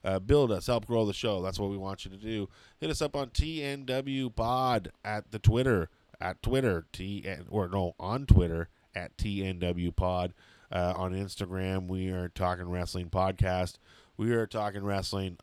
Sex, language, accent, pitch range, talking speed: male, English, American, 95-120 Hz, 175 wpm